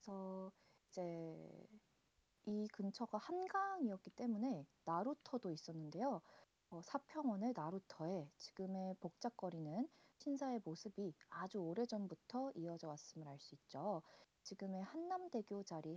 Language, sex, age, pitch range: Korean, female, 40-59, 170-235 Hz